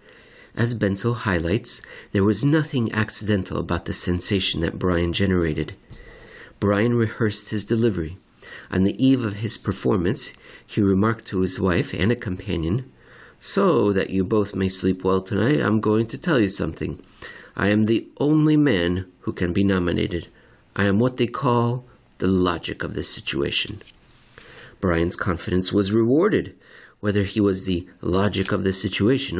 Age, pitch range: 50-69, 90-115 Hz